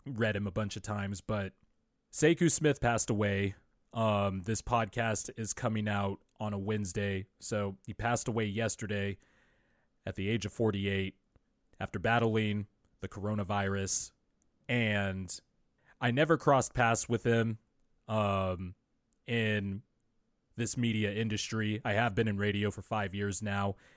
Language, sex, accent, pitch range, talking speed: English, male, American, 100-115 Hz, 140 wpm